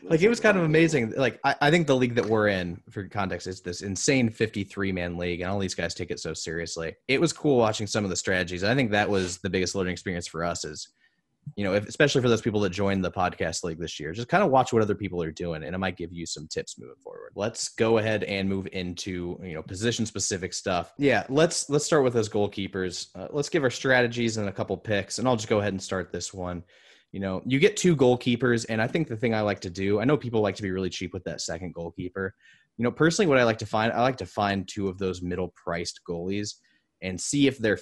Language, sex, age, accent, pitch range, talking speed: English, male, 20-39, American, 90-115 Hz, 260 wpm